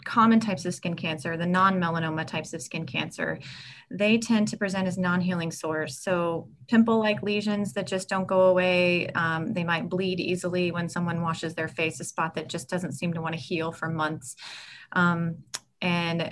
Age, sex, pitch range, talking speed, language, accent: 30-49, female, 165-185 Hz, 185 wpm, English, American